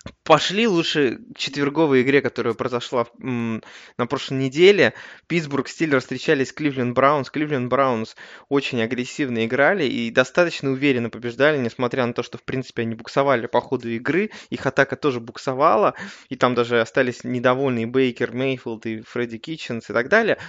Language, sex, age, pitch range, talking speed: Russian, male, 20-39, 125-155 Hz, 150 wpm